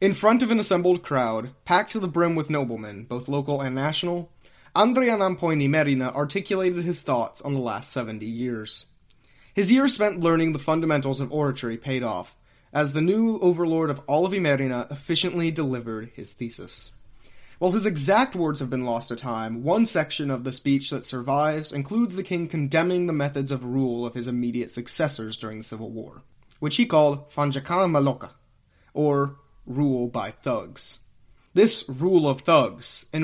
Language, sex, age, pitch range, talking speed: English, male, 30-49, 125-170 Hz, 170 wpm